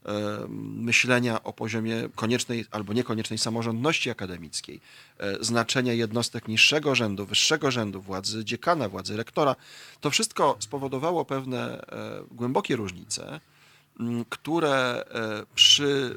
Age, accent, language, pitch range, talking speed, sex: 40-59, native, Polish, 110-145 Hz, 95 wpm, male